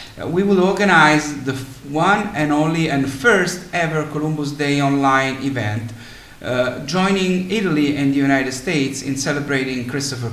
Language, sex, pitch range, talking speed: English, male, 120-150 Hz, 140 wpm